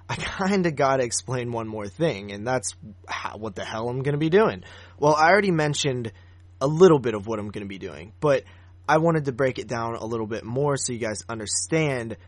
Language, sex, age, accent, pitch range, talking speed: English, male, 20-39, American, 100-145 Hz, 215 wpm